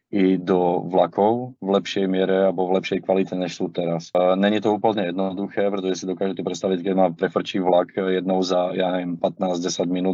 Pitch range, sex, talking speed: 90-95 Hz, male, 180 wpm